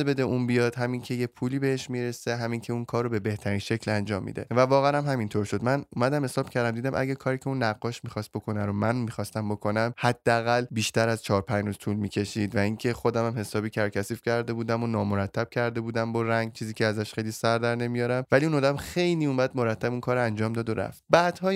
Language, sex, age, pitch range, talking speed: Persian, male, 20-39, 110-130 Hz, 225 wpm